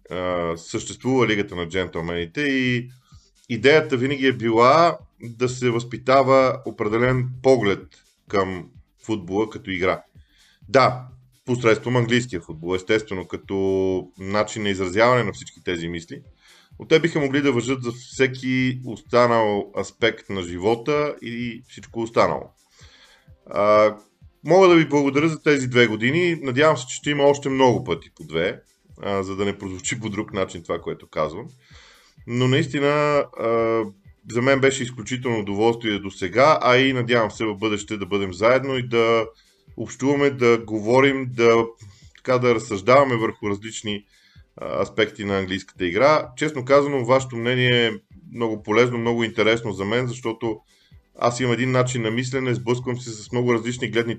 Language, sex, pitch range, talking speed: Bulgarian, male, 105-130 Hz, 145 wpm